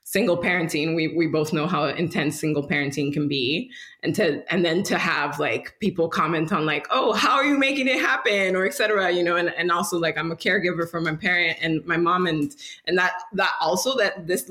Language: English